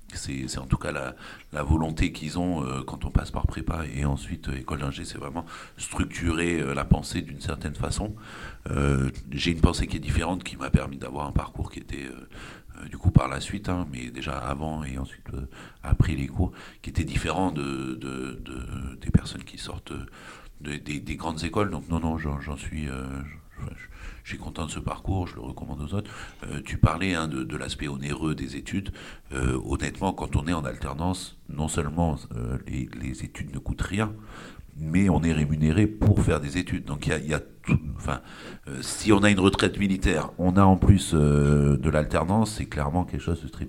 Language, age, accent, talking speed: French, 60-79, French, 220 wpm